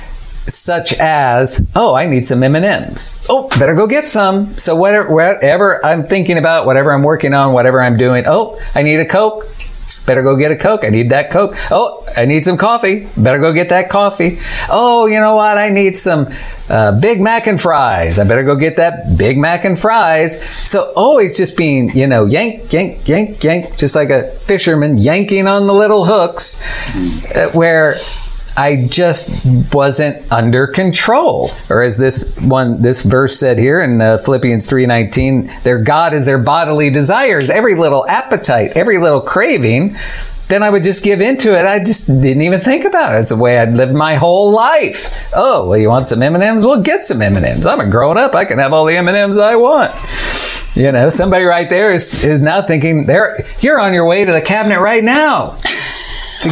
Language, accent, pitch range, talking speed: English, American, 130-200 Hz, 205 wpm